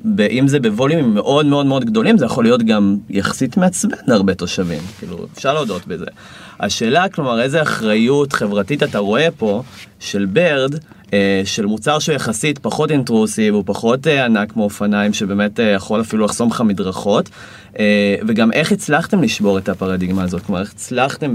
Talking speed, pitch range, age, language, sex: 155 wpm, 105-150 Hz, 30-49, Hebrew, male